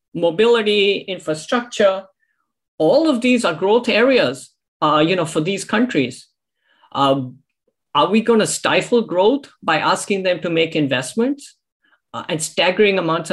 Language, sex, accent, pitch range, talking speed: English, male, Indian, 160-235 Hz, 140 wpm